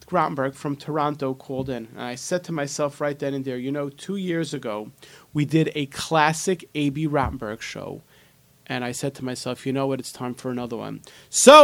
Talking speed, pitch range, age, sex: 205 wpm, 140-205 Hz, 30-49, male